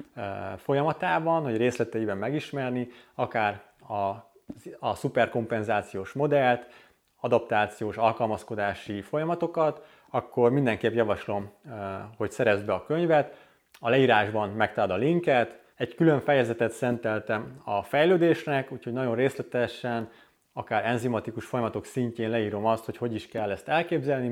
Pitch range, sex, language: 105-140 Hz, male, Hungarian